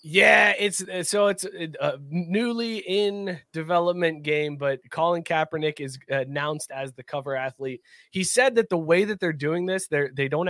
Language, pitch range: English, 135-180 Hz